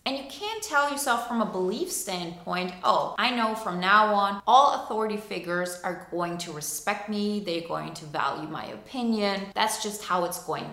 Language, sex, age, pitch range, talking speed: English, female, 20-39, 195-270 Hz, 190 wpm